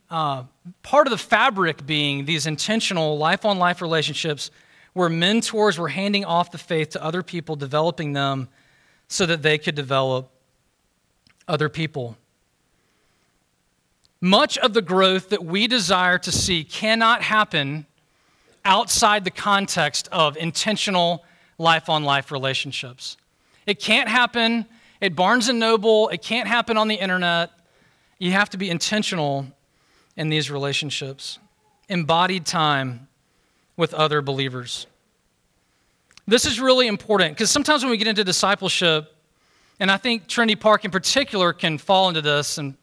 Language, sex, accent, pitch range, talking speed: English, male, American, 150-210 Hz, 140 wpm